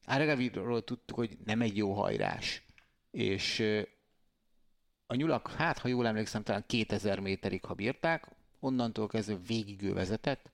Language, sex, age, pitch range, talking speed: Hungarian, male, 30-49, 100-120 Hz, 130 wpm